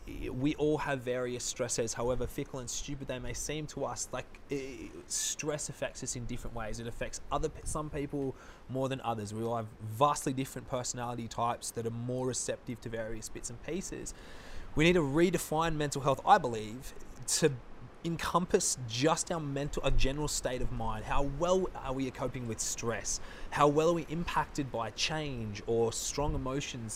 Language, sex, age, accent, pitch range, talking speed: English, male, 20-39, Australian, 115-145 Hz, 180 wpm